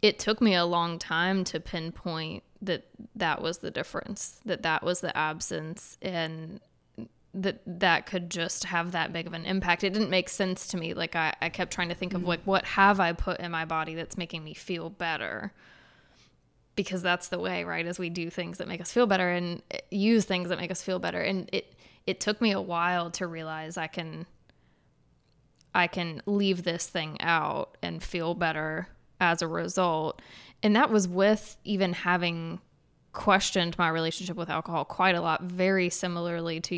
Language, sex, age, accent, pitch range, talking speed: English, female, 20-39, American, 165-185 Hz, 195 wpm